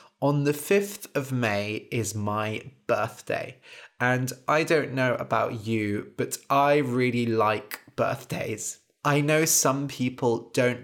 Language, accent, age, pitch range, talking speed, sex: English, British, 20-39, 110-140 Hz, 135 wpm, male